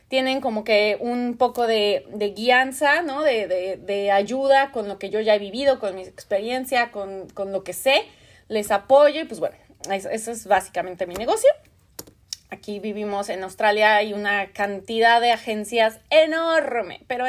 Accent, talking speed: Mexican, 175 wpm